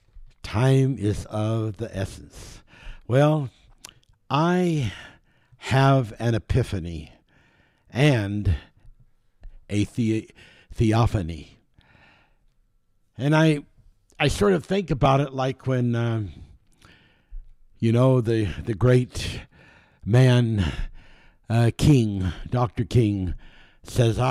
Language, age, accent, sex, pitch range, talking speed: English, 60-79, American, male, 100-130 Hz, 90 wpm